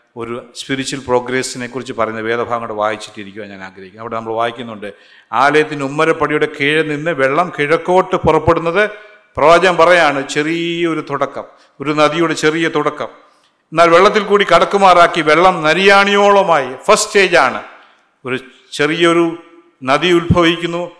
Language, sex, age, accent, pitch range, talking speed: Malayalam, male, 50-69, native, 120-170 Hz, 115 wpm